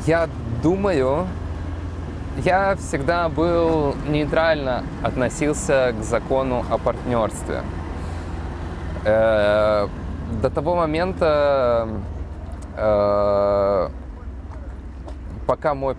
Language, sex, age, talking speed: Russian, male, 20-39, 60 wpm